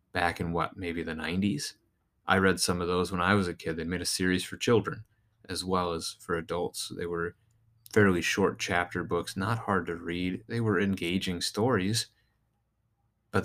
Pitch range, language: 90-110 Hz, English